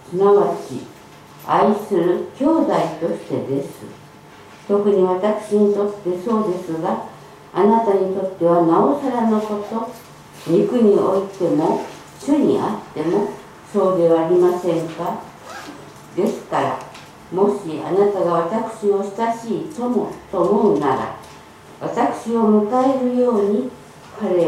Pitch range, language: 180-225 Hz, Japanese